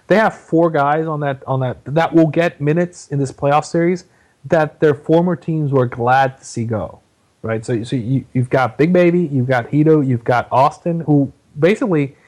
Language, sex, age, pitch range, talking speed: English, male, 30-49, 125-170 Hz, 200 wpm